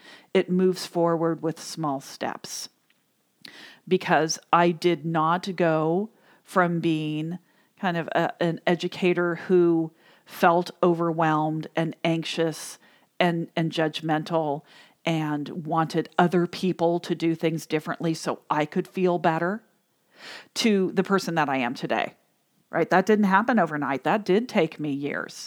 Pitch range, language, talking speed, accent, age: 165-205 Hz, English, 130 wpm, American, 40-59